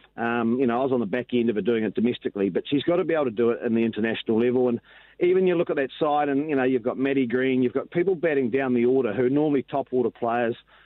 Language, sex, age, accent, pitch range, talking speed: English, male, 40-59, Australian, 125-165 Hz, 295 wpm